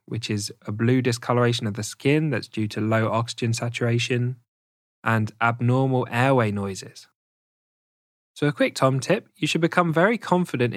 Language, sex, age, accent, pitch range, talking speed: English, male, 10-29, British, 110-130 Hz, 155 wpm